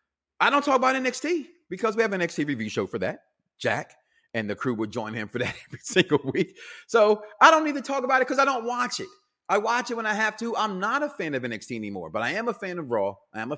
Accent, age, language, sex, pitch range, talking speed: American, 30-49, English, male, 150-245 Hz, 280 wpm